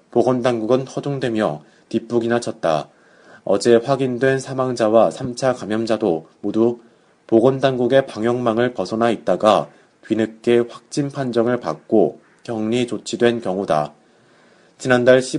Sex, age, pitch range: male, 30-49, 110-130 Hz